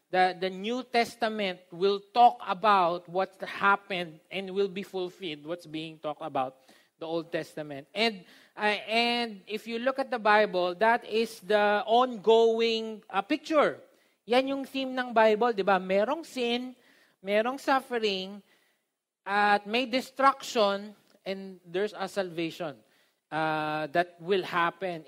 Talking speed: 135 wpm